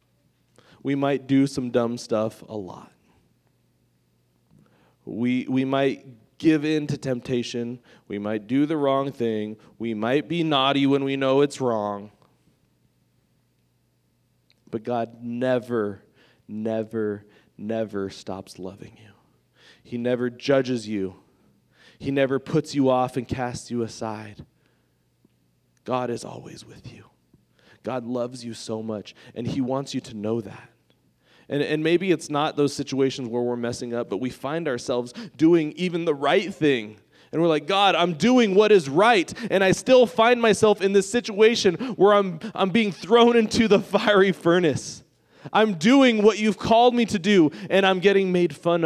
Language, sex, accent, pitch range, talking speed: English, male, American, 115-190 Hz, 155 wpm